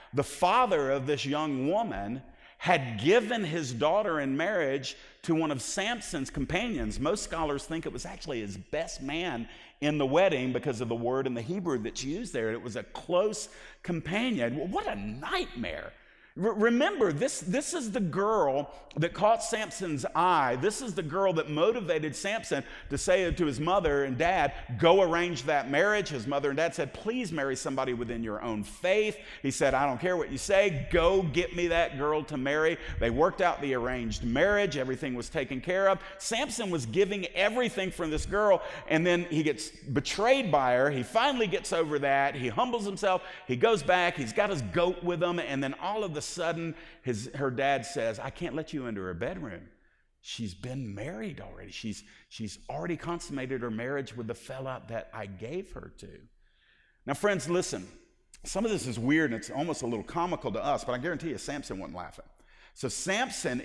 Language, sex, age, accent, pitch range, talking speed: English, male, 50-69, American, 130-185 Hz, 195 wpm